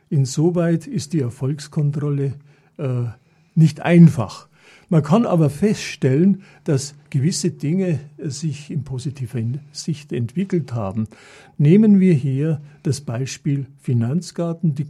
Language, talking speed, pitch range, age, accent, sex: German, 110 wpm, 135-165 Hz, 50-69, German, male